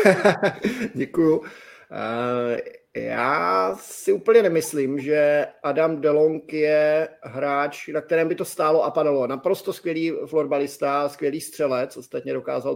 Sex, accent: male, native